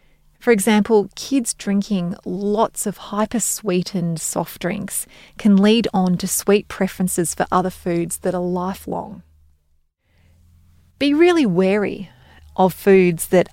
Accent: Australian